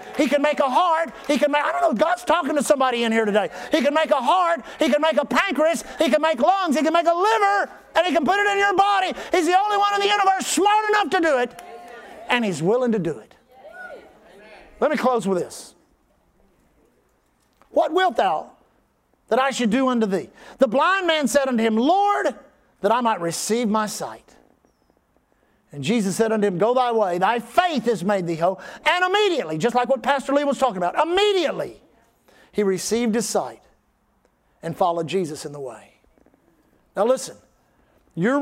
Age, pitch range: 50-69, 225-315 Hz